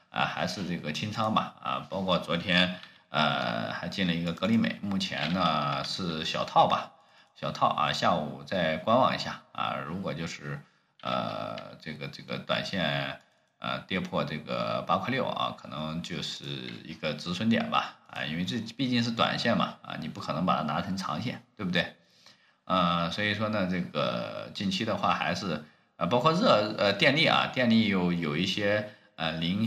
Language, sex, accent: Chinese, male, native